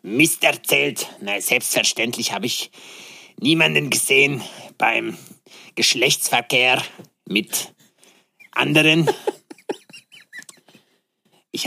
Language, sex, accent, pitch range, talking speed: German, male, German, 140-195 Hz, 65 wpm